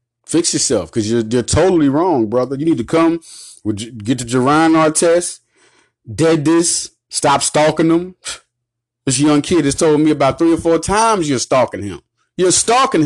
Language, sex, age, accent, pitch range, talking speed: English, male, 30-49, American, 120-195 Hz, 175 wpm